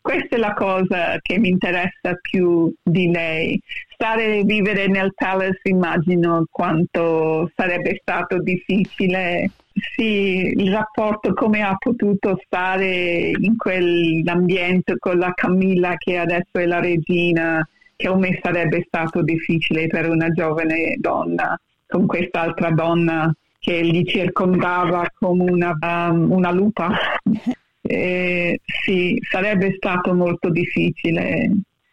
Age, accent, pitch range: 50-69, native, 175-215 Hz